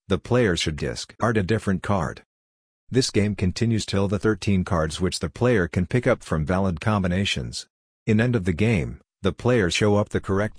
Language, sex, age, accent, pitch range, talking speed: English, male, 50-69, American, 90-105 Hz, 195 wpm